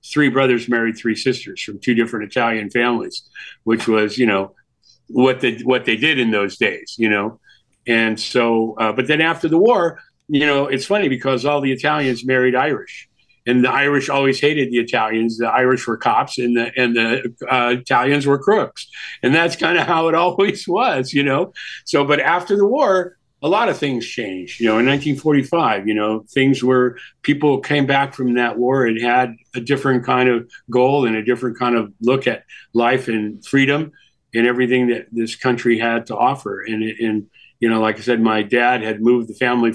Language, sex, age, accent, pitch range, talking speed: English, male, 50-69, American, 115-130 Hz, 200 wpm